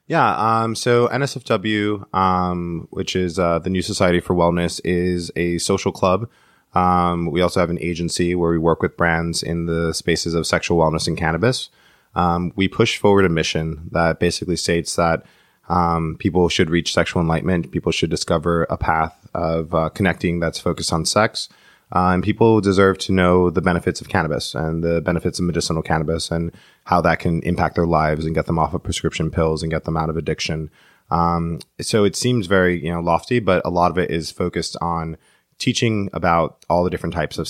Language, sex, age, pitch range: English, male, 20-39, 80-90 Hz